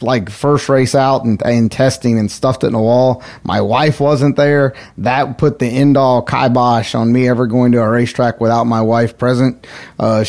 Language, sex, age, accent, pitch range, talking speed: English, male, 30-49, American, 120-140 Hz, 205 wpm